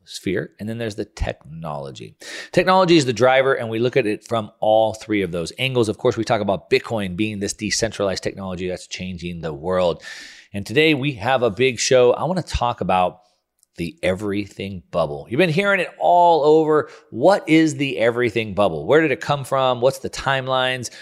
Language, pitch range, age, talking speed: English, 100-135 Hz, 40-59, 195 wpm